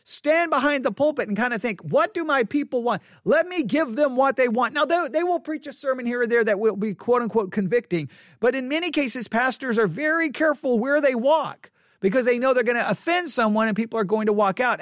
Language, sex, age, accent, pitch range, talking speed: English, male, 40-59, American, 220-280 Hz, 250 wpm